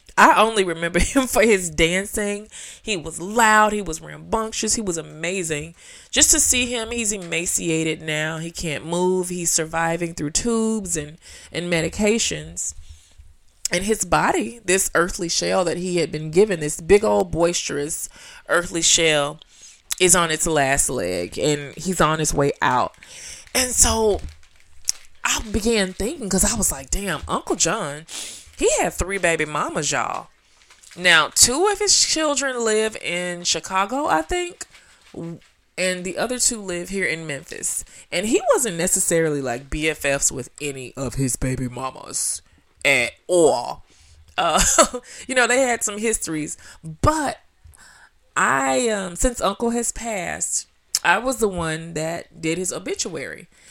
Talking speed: 150 wpm